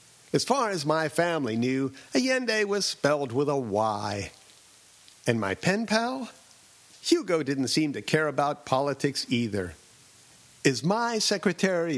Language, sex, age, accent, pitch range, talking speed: English, male, 50-69, American, 130-190 Hz, 135 wpm